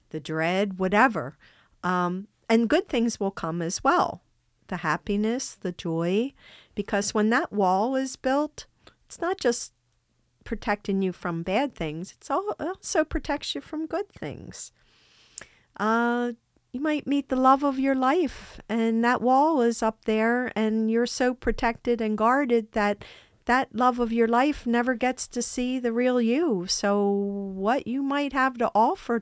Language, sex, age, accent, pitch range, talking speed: English, female, 50-69, American, 200-270 Hz, 160 wpm